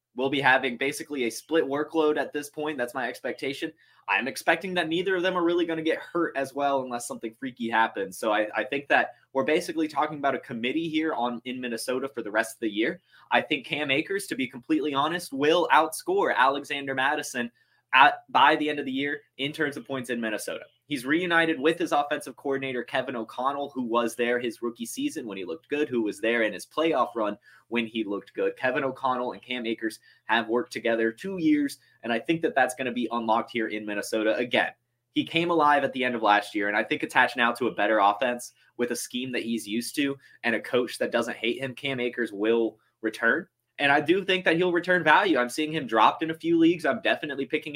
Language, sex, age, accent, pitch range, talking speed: English, male, 20-39, American, 120-160 Hz, 230 wpm